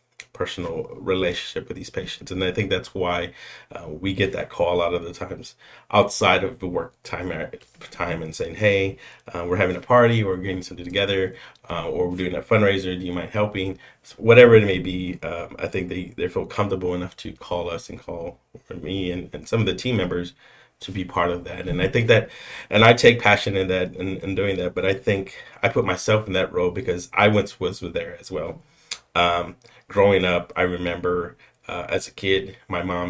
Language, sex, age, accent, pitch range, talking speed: English, male, 30-49, American, 90-105 Hz, 220 wpm